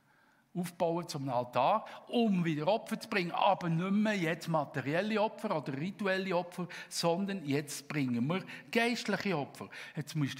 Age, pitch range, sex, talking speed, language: 50-69, 140-185 Hz, male, 145 wpm, German